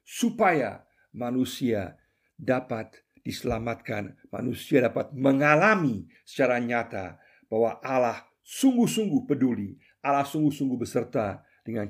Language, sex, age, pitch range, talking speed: Indonesian, male, 50-69, 115-145 Hz, 85 wpm